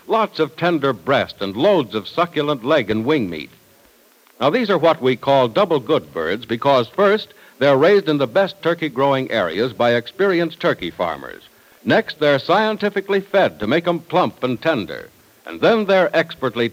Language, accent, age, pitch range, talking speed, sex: English, American, 60-79, 115-170 Hz, 170 wpm, male